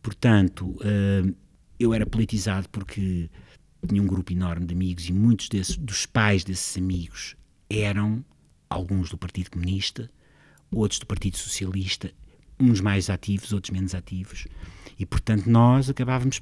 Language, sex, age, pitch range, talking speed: Portuguese, male, 50-69, 95-120 Hz, 135 wpm